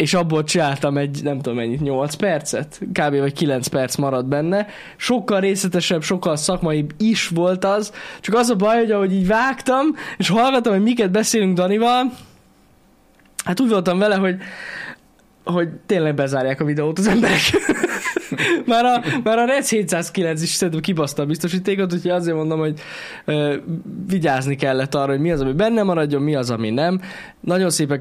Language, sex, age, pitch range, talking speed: Hungarian, male, 10-29, 150-205 Hz, 165 wpm